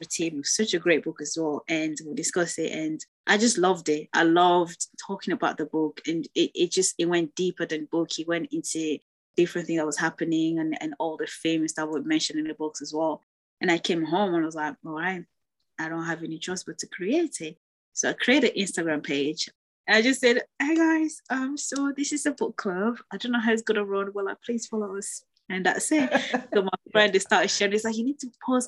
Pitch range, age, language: 160-225 Hz, 20-39, English